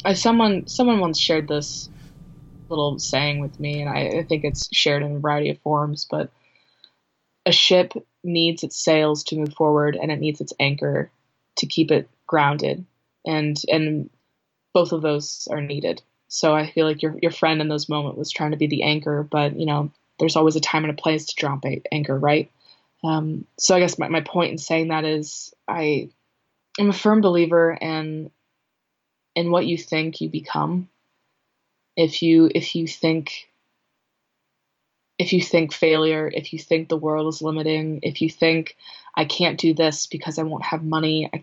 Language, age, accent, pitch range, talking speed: English, 20-39, American, 150-165 Hz, 185 wpm